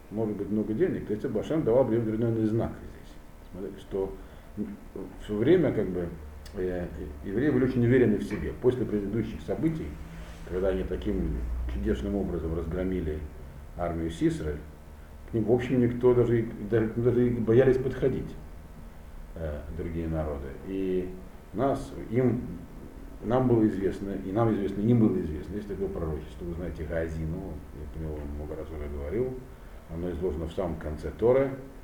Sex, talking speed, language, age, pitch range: male, 155 wpm, Russian, 50-69, 75-110 Hz